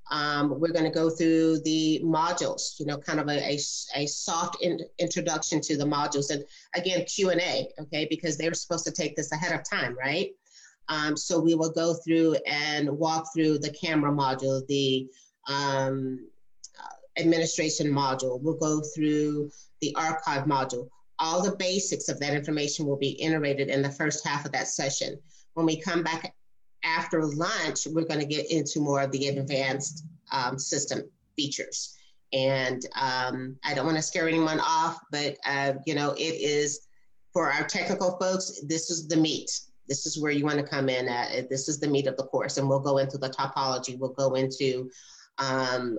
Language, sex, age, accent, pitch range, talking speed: English, female, 30-49, American, 135-160 Hz, 180 wpm